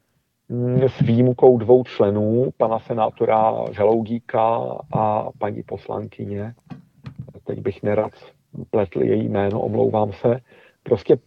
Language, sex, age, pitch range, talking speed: Czech, male, 50-69, 110-130 Hz, 100 wpm